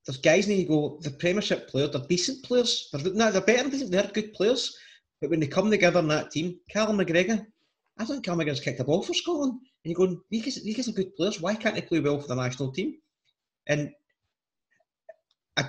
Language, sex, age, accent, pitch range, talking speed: English, male, 30-49, British, 140-205 Hz, 215 wpm